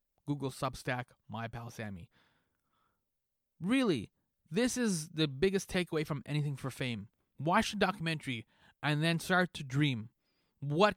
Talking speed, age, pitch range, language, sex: 130 wpm, 30-49, 120-170 Hz, English, male